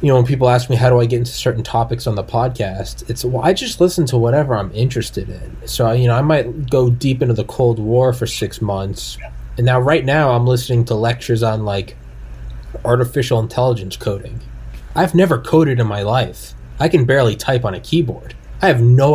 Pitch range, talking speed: 110-130 Hz, 215 wpm